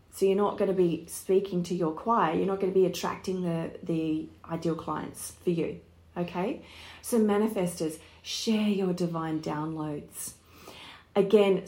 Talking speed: 155 wpm